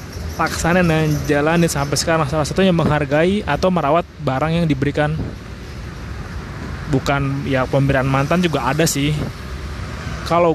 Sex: male